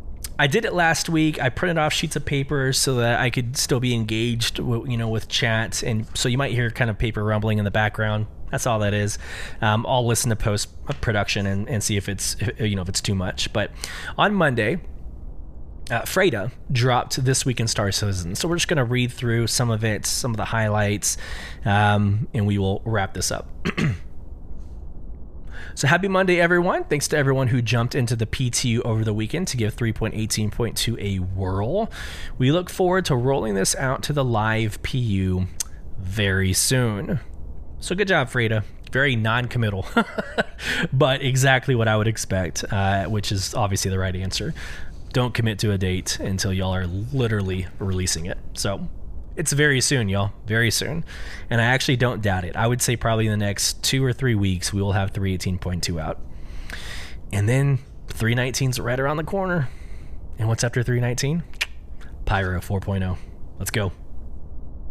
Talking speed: 180 wpm